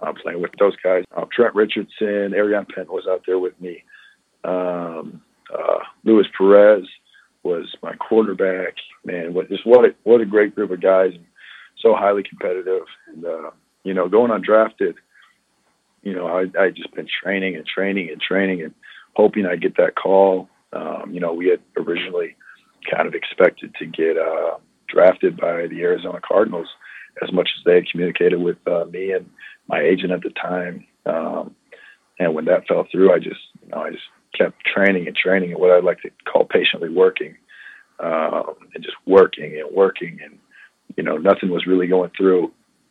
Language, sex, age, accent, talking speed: English, male, 40-59, American, 185 wpm